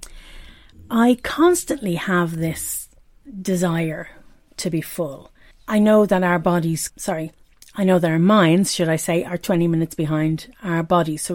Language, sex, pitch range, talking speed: English, female, 165-205 Hz, 155 wpm